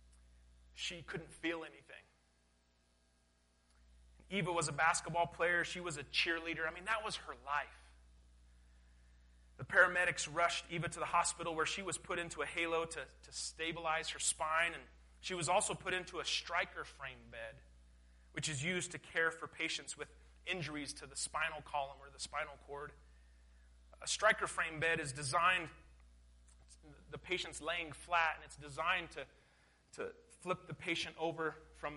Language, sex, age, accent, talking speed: English, male, 30-49, American, 160 wpm